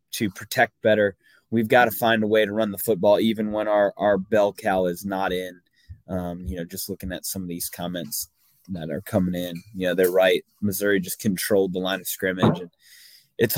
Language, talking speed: English, 215 wpm